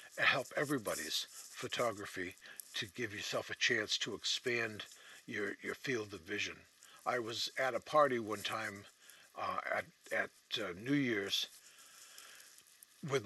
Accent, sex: American, male